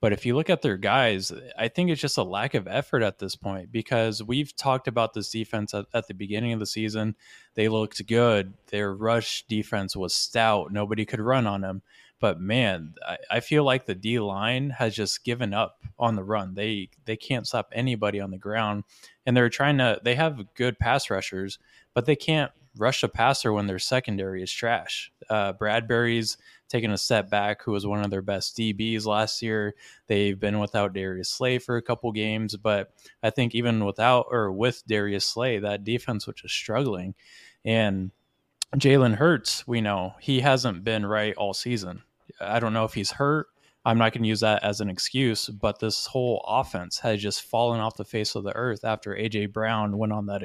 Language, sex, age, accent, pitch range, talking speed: English, male, 20-39, American, 105-120 Hz, 205 wpm